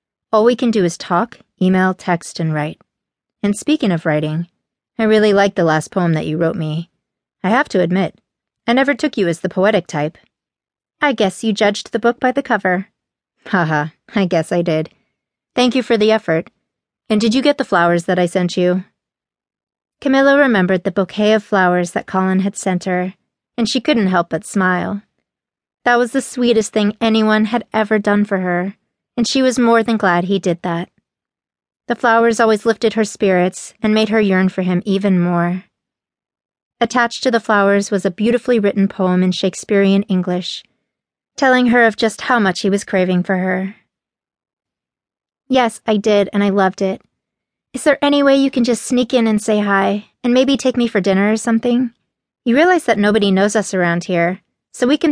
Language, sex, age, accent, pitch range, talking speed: English, female, 30-49, American, 185-235 Hz, 195 wpm